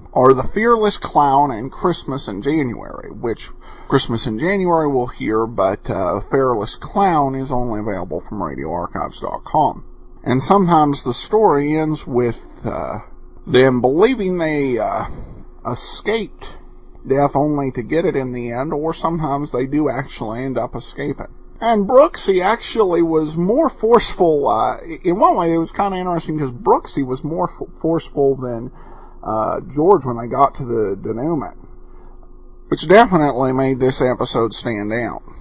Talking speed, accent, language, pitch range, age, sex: 150 wpm, American, English, 125-180 Hz, 50-69, male